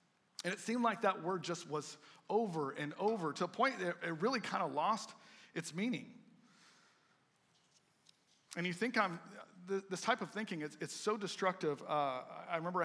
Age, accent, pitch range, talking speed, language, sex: 40-59, American, 150-200 Hz, 170 wpm, English, male